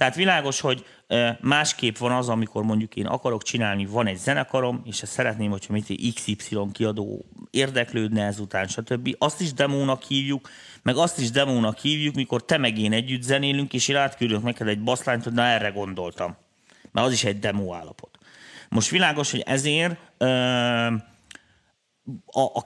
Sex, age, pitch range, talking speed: male, 30-49, 110-140 Hz, 155 wpm